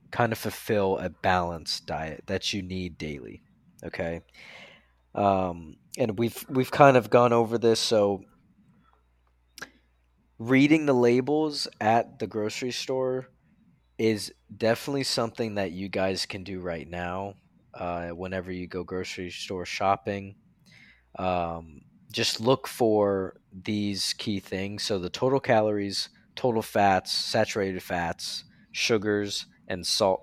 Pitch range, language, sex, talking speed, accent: 95-115 Hz, English, male, 125 wpm, American